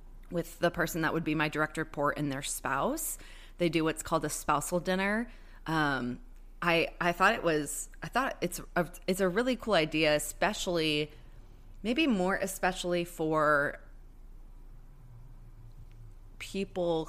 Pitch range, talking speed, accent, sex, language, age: 145-170 Hz, 140 wpm, American, female, English, 20-39